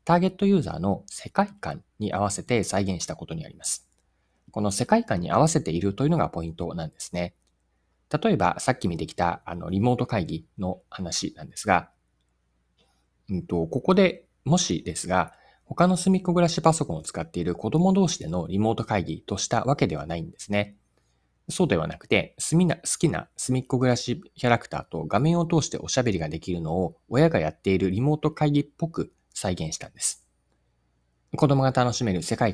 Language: Japanese